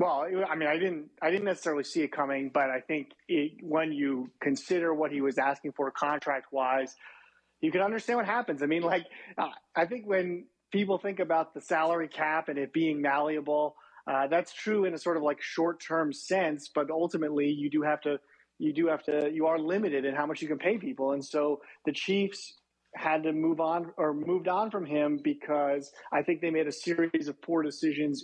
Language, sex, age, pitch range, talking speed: English, male, 30-49, 145-175 Hz, 210 wpm